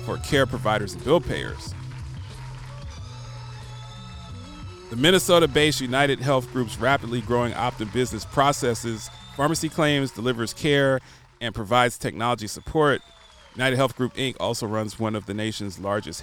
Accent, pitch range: American, 110-130 Hz